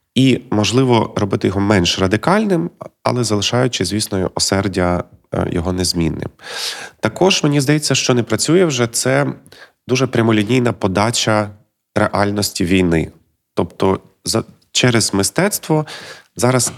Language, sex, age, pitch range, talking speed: Ukrainian, male, 30-49, 90-115 Hz, 105 wpm